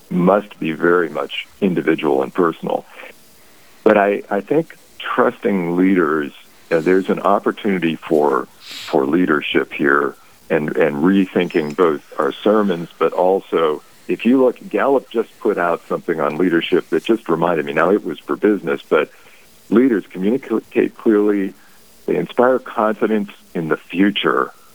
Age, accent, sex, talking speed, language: 50-69, American, male, 140 wpm, English